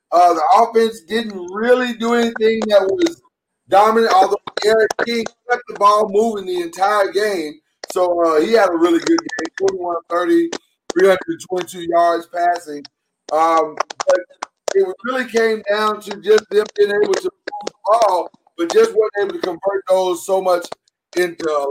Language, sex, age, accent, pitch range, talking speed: English, male, 30-49, American, 170-255 Hz, 165 wpm